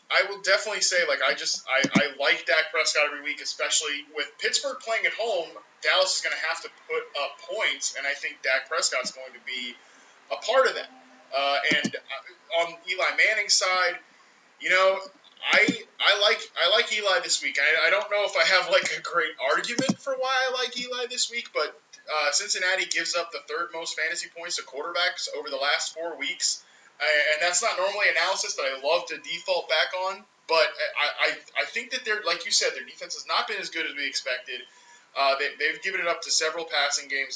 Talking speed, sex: 215 wpm, male